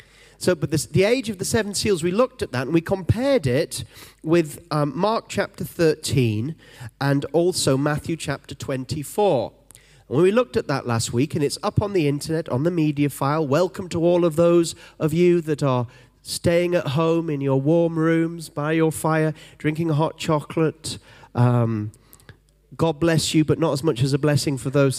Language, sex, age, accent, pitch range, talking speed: English, male, 30-49, British, 130-175 Hz, 185 wpm